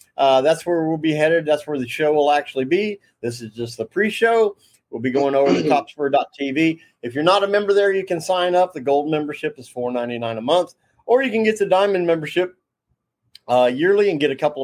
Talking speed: 220 wpm